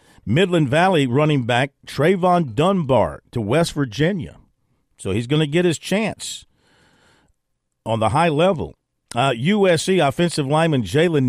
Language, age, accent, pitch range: English, 50-69, American, 110-155 Hz